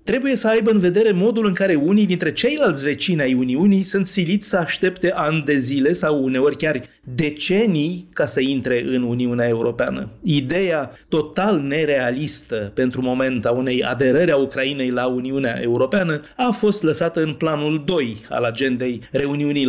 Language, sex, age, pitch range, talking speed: Romanian, male, 30-49, 130-175 Hz, 160 wpm